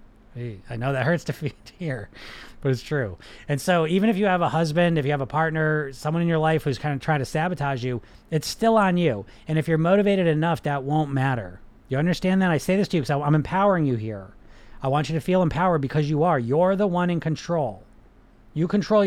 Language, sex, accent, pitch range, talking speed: English, male, American, 125-165 Hz, 235 wpm